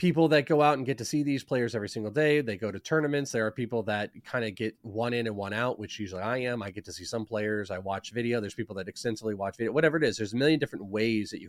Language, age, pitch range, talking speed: English, 30-49, 110-145 Hz, 305 wpm